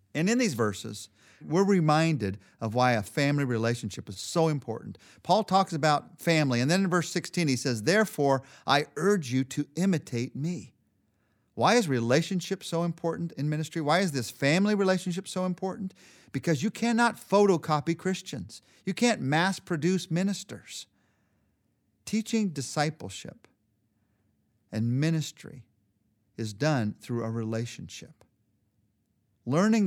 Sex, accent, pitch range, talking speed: male, American, 110-175 Hz, 135 wpm